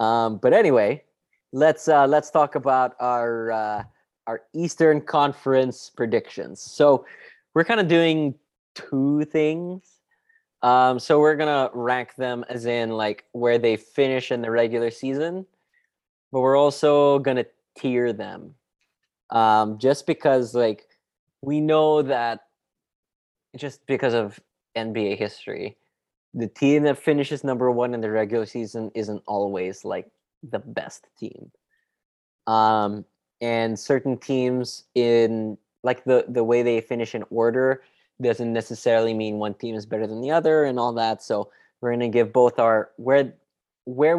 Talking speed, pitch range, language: 145 wpm, 115-145 Hz, English